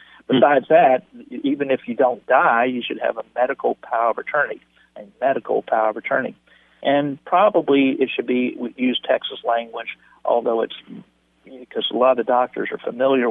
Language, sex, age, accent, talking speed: English, male, 50-69, American, 165 wpm